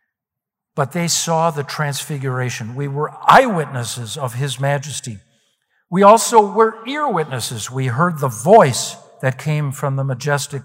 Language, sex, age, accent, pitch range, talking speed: English, male, 60-79, American, 140-200 Hz, 135 wpm